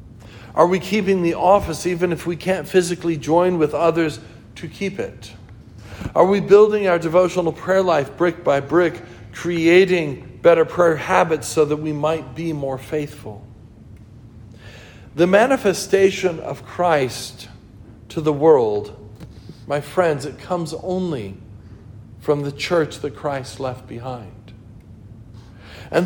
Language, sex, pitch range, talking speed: English, male, 115-170 Hz, 130 wpm